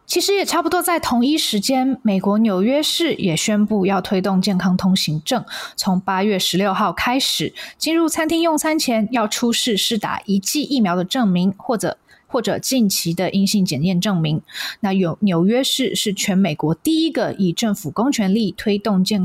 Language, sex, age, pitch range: Chinese, female, 20-39, 185-245 Hz